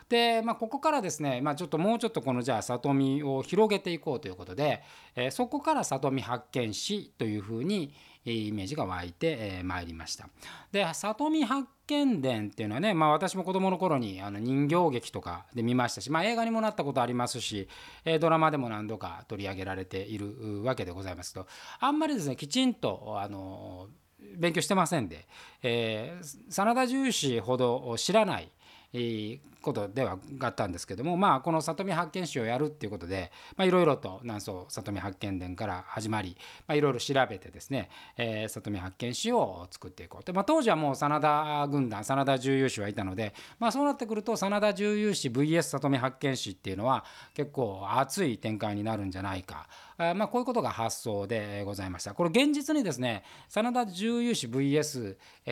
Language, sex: Japanese, male